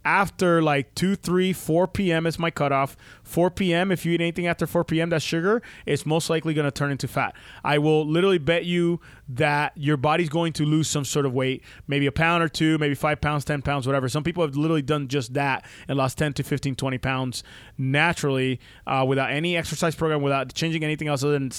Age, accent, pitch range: 20-39, American, 135-160 Hz